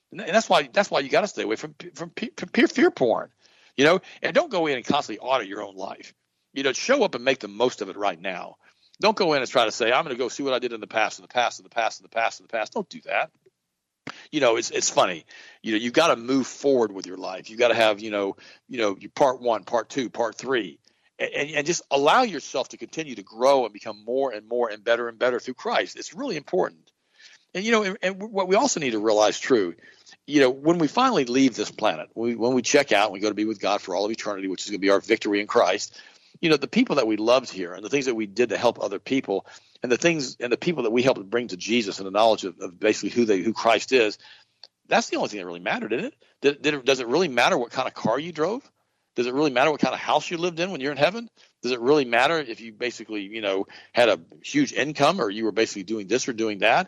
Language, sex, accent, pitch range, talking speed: English, male, American, 110-170 Hz, 285 wpm